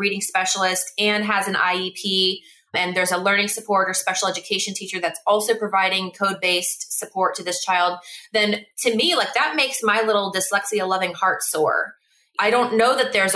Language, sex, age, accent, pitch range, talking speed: English, female, 20-39, American, 180-215 Hz, 185 wpm